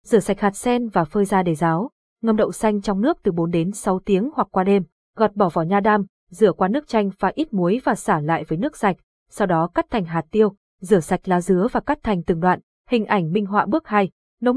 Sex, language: female, Vietnamese